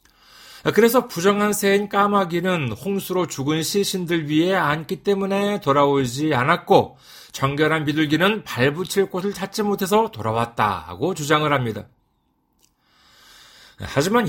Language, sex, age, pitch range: Korean, male, 40-59, 140-205 Hz